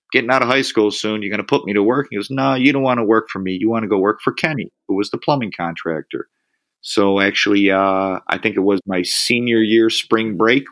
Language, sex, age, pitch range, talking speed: English, male, 30-49, 100-115 Hz, 270 wpm